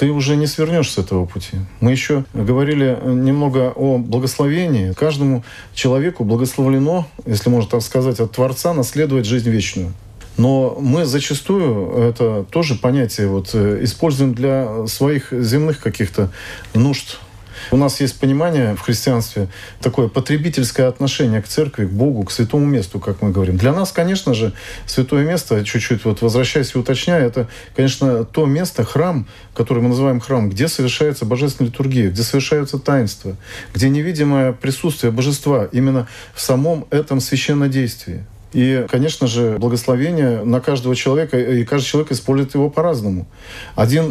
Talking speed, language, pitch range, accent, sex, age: 145 wpm, Russian, 115-140 Hz, native, male, 40-59